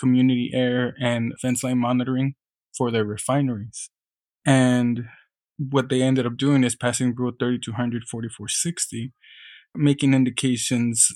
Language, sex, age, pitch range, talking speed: English, male, 20-39, 120-130 Hz, 115 wpm